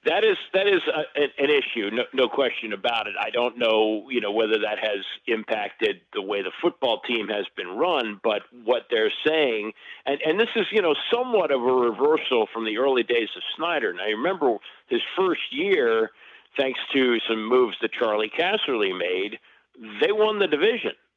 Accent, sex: American, male